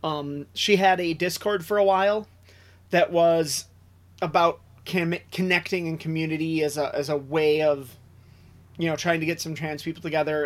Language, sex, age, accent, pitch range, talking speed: English, male, 30-49, American, 135-185 Hz, 170 wpm